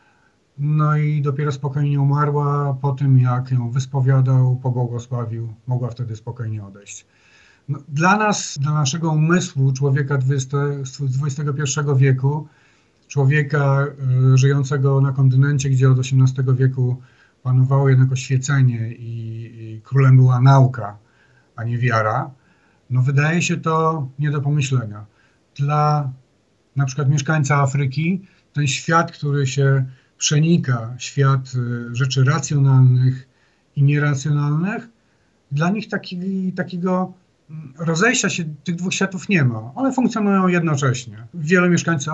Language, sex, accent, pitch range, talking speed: Polish, male, native, 130-155 Hz, 115 wpm